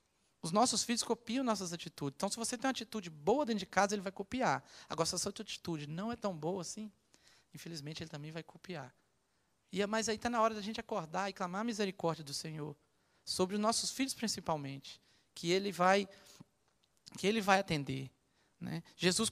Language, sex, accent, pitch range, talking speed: Portuguese, male, Brazilian, 165-220 Hz, 200 wpm